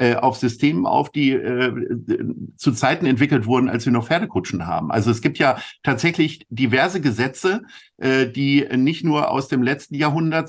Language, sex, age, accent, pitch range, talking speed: German, male, 50-69, German, 125-170 Hz, 165 wpm